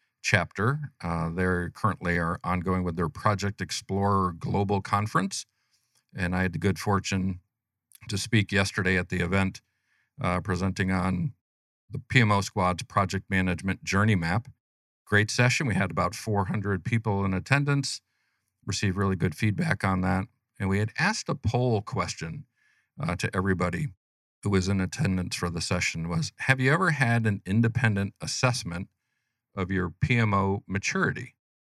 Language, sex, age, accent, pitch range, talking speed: English, male, 50-69, American, 95-120 Hz, 150 wpm